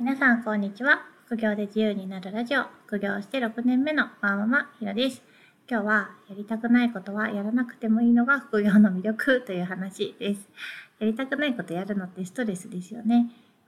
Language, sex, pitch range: Japanese, female, 195-235 Hz